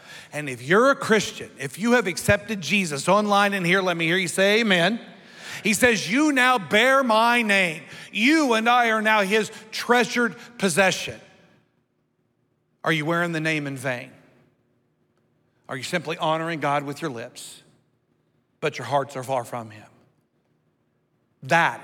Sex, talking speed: male, 155 wpm